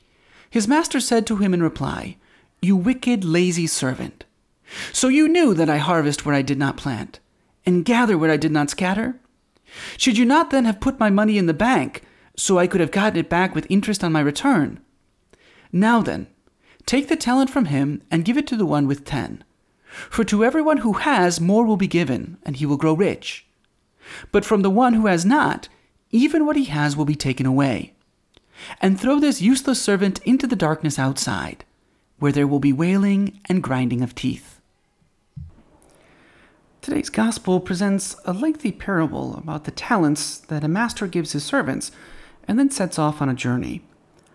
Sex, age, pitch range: male, 30-49, 155-235 Hz